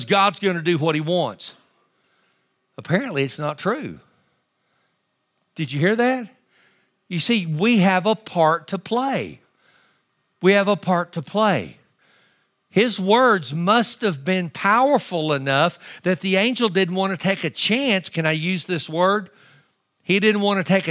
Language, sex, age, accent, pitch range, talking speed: English, male, 50-69, American, 160-195 Hz, 160 wpm